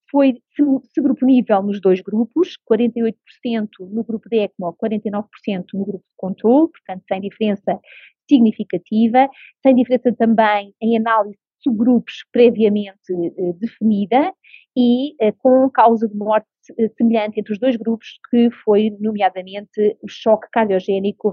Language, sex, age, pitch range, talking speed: Portuguese, female, 30-49, 210-245 Hz, 130 wpm